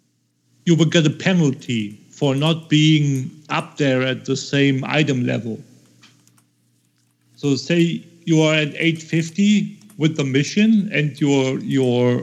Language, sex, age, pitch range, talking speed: English, male, 50-69, 125-155 Hz, 130 wpm